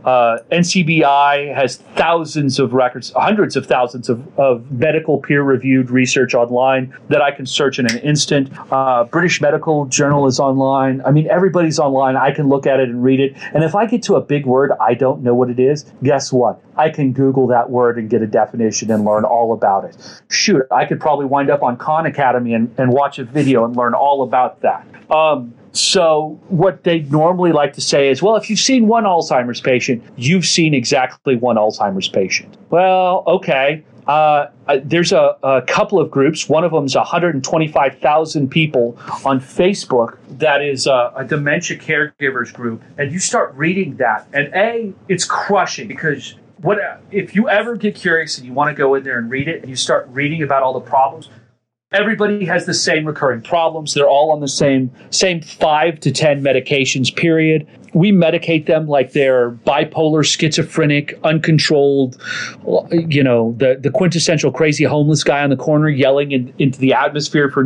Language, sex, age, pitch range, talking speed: English, male, 40-59, 130-160 Hz, 185 wpm